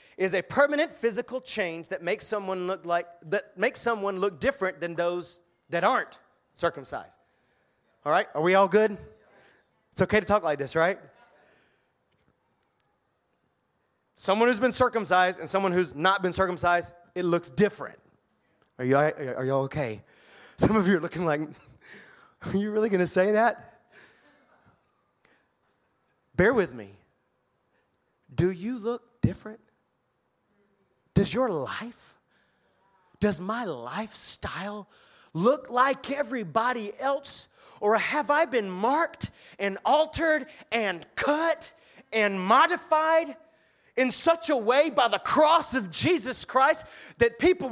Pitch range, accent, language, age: 185-280 Hz, American, English, 30-49